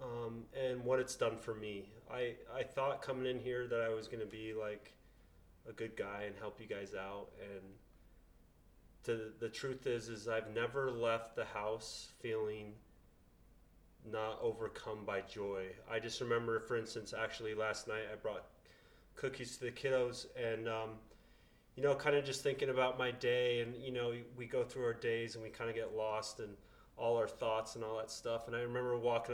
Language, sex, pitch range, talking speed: English, male, 110-125 Hz, 190 wpm